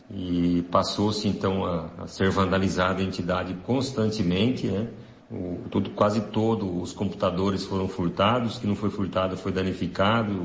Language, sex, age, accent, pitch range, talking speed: Portuguese, male, 50-69, Brazilian, 95-115 Hz, 150 wpm